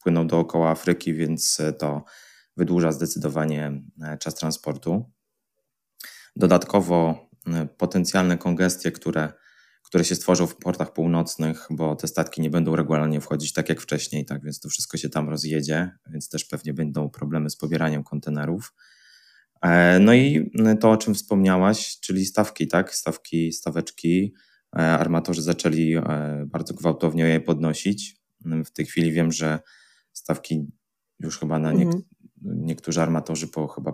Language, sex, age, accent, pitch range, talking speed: Polish, male, 20-39, native, 80-90 Hz, 130 wpm